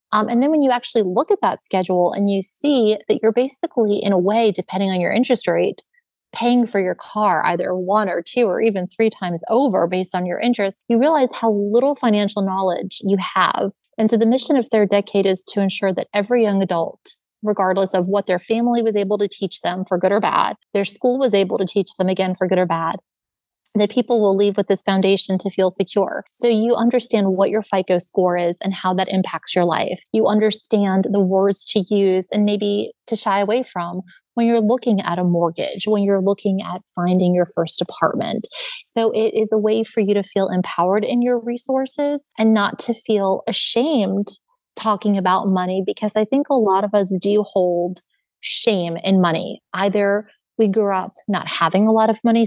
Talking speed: 210 wpm